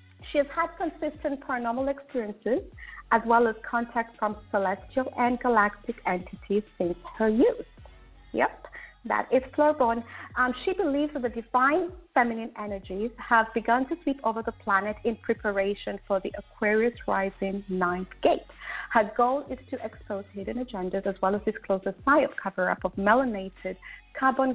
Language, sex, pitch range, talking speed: English, female, 200-265 Hz, 155 wpm